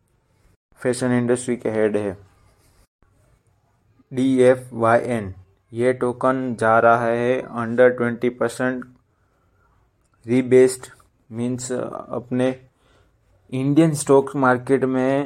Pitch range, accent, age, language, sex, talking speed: 115-125 Hz, native, 20-39, Hindi, male, 85 wpm